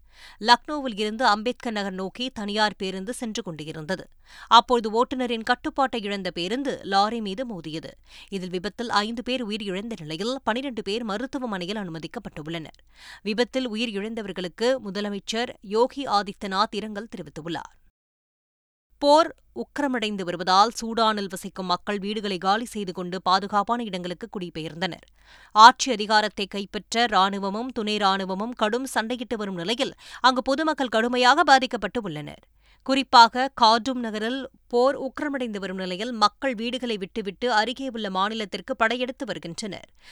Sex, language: female, Tamil